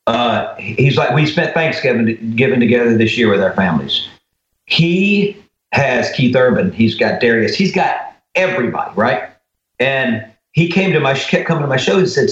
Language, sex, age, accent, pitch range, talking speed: English, male, 50-69, American, 120-165 Hz, 175 wpm